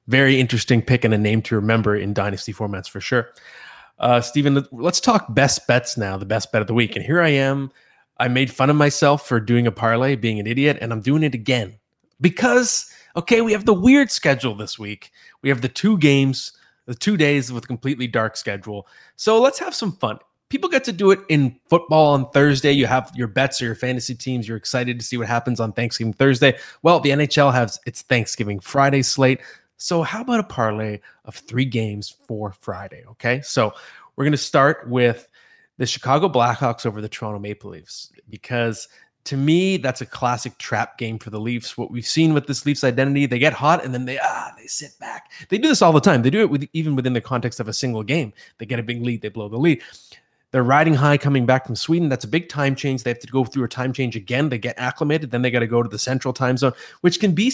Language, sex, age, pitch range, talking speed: English, male, 20-39, 115-145 Hz, 235 wpm